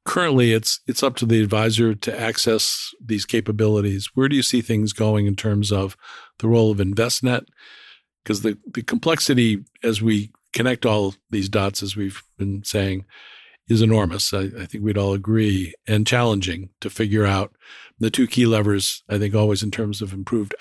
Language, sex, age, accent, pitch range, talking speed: English, male, 50-69, American, 105-115 Hz, 180 wpm